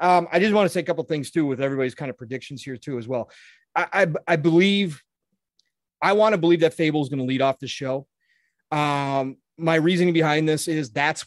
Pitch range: 135-160 Hz